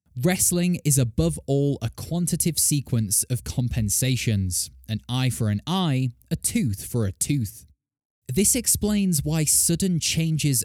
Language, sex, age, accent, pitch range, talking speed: English, male, 20-39, British, 110-170 Hz, 135 wpm